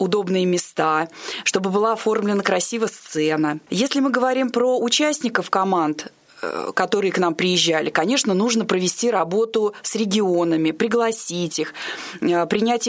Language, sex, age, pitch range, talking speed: Russian, female, 20-39, 170-225 Hz, 120 wpm